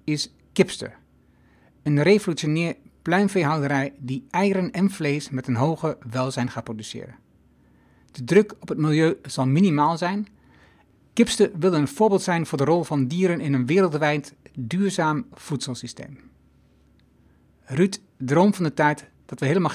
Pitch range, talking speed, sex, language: 130-175 Hz, 140 wpm, male, Dutch